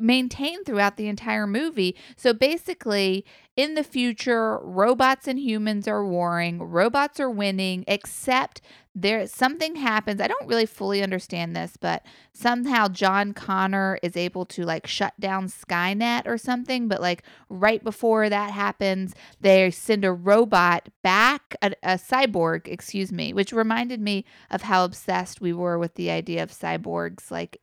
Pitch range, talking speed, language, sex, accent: 175-230 Hz, 155 wpm, English, female, American